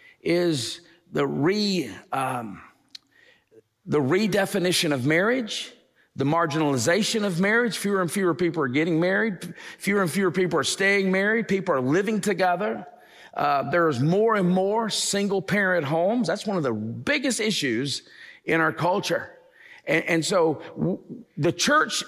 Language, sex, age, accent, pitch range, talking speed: English, male, 50-69, American, 150-210 Hz, 140 wpm